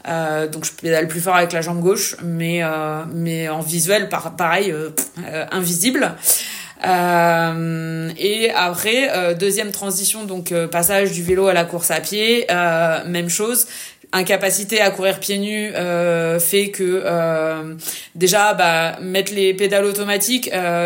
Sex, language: female, French